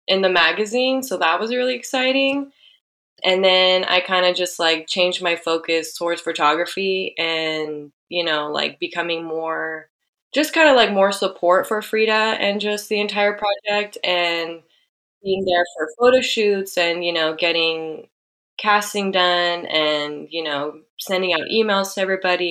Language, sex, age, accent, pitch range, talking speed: English, female, 20-39, American, 165-210 Hz, 155 wpm